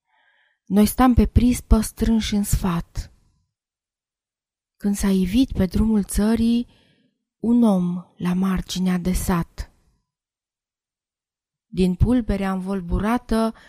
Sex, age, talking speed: female, 20-39, 95 wpm